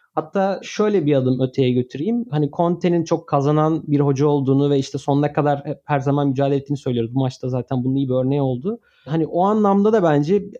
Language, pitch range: Turkish, 140-180 Hz